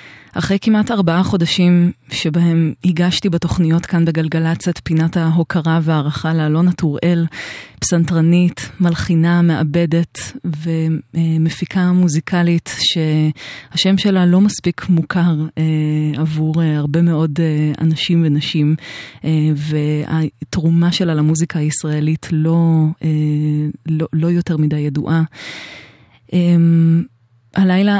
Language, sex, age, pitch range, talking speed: Hebrew, female, 20-39, 155-175 Hz, 90 wpm